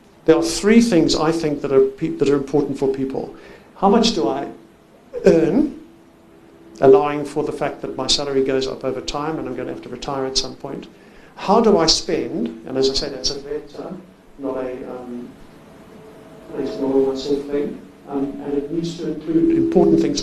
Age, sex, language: 50-69, male, English